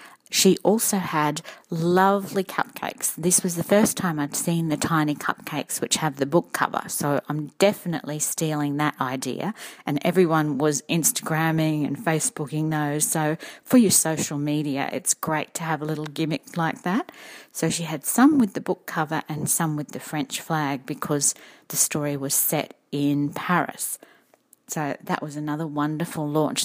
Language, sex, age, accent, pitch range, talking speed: English, female, 40-59, Australian, 150-195 Hz, 165 wpm